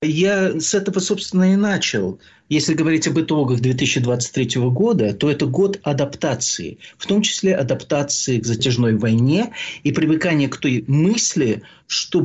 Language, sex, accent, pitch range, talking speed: Russian, male, native, 125-170 Hz, 140 wpm